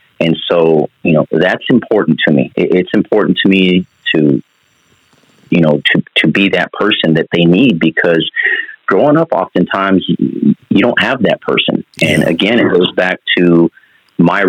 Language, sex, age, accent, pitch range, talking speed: English, male, 40-59, American, 85-105 Hz, 160 wpm